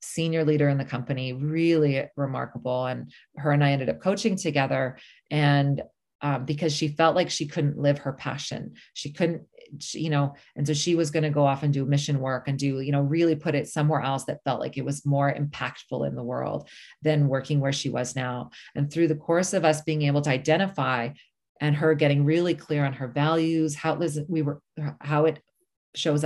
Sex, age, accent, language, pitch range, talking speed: female, 30-49, American, English, 140-155 Hz, 210 wpm